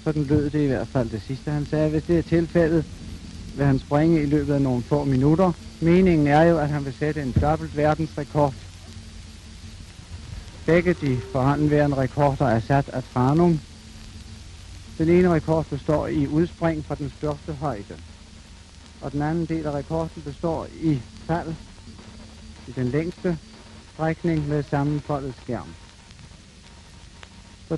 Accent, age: native, 60-79